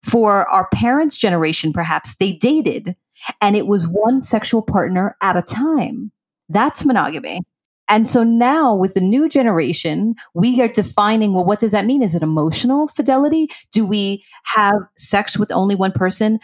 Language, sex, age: English, female, 30-49